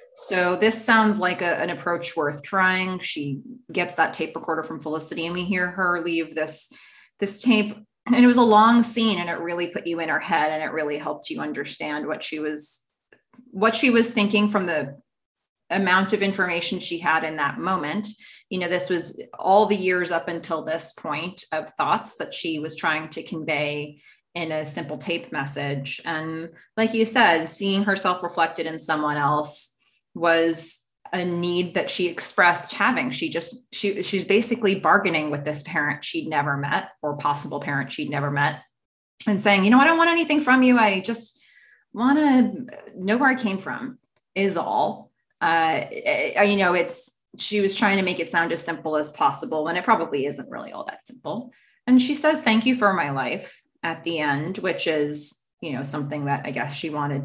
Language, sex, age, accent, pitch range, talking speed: English, female, 20-39, American, 155-215 Hz, 190 wpm